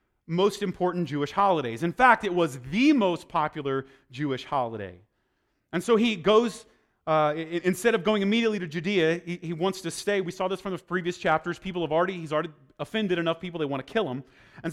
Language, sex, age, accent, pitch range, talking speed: English, male, 30-49, American, 155-200 Hz, 205 wpm